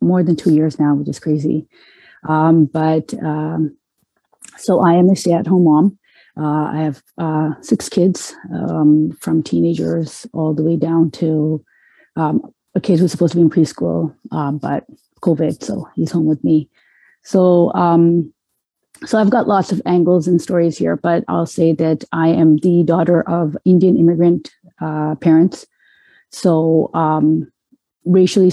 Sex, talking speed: female, 160 wpm